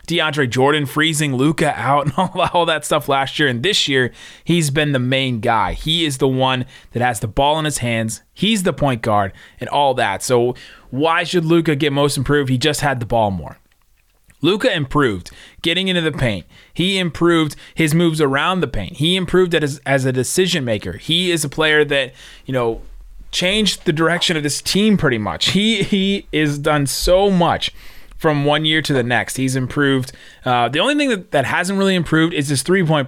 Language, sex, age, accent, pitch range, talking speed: English, male, 30-49, American, 130-175 Hz, 200 wpm